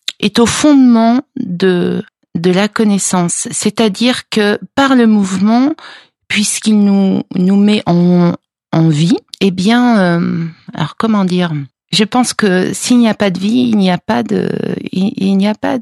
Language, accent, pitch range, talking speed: French, French, 185-225 Hz, 165 wpm